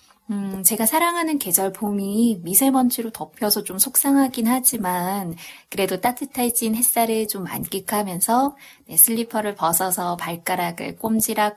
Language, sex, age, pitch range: Korean, female, 20-39, 185-255 Hz